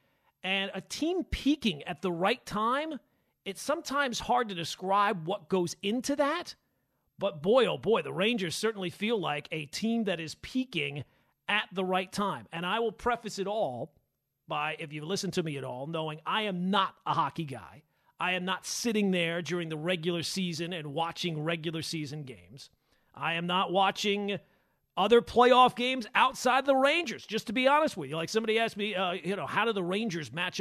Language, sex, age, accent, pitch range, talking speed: English, male, 40-59, American, 170-225 Hz, 190 wpm